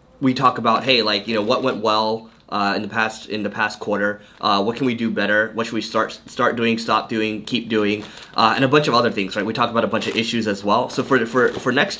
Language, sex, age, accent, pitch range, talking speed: English, male, 20-39, American, 105-120 Hz, 280 wpm